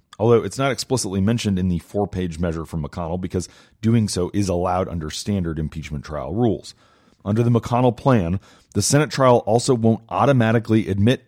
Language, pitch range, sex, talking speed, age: English, 90-115 Hz, male, 170 wpm, 40-59